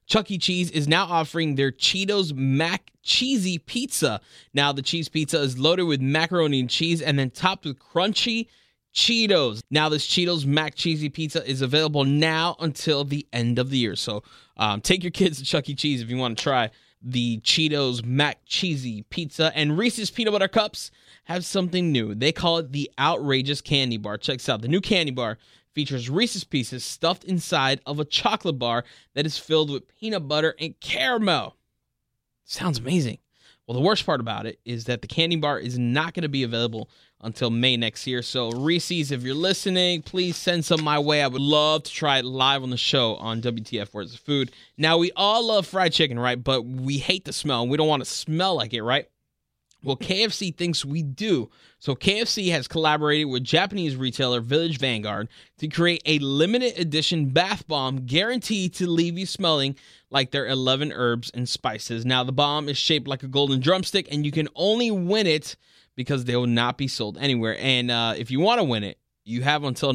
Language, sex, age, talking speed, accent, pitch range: English, male, 20-39, 200 wpm, American, 130-170 Hz